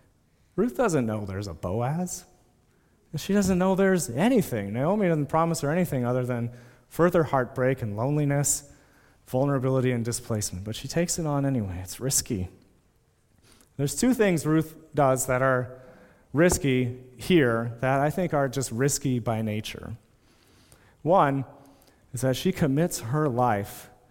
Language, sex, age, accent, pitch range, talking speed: English, male, 30-49, American, 120-155 Hz, 145 wpm